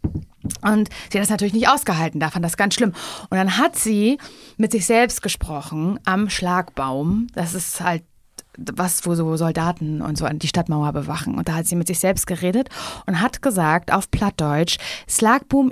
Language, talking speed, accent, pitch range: German, 185 wpm, German, 175-230 Hz